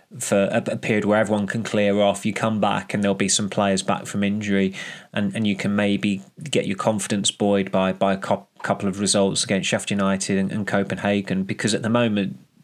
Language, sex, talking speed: English, male, 215 wpm